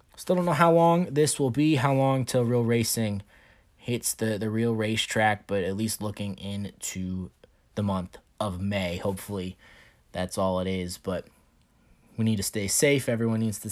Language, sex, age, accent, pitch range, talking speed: English, male, 20-39, American, 95-120 Hz, 180 wpm